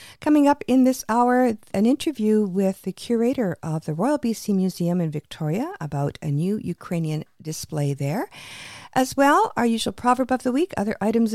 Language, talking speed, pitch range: English, 175 wpm, 155-210 Hz